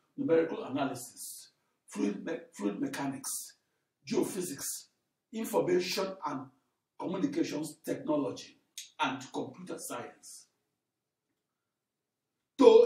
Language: English